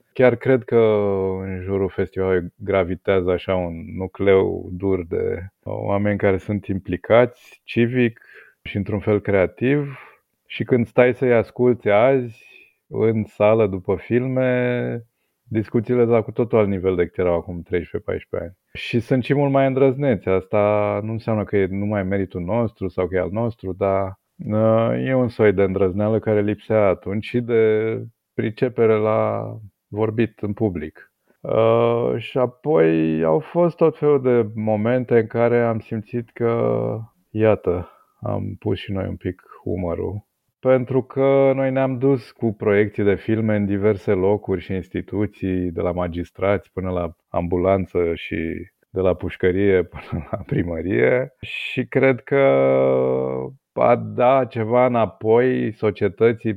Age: 20-39